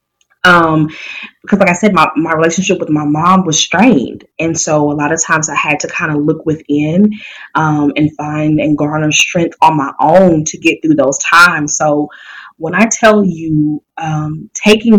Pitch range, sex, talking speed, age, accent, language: 155-210 Hz, female, 190 wpm, 20-39, American, English